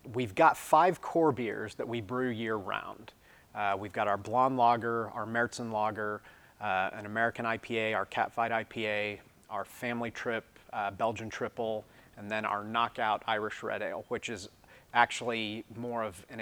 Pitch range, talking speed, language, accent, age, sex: 105-120 Hz, 155 wpm, English, American, 30-49, male